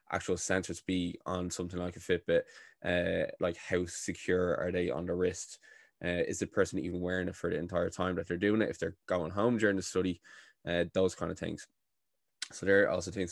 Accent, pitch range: Irish, 95-105 Hz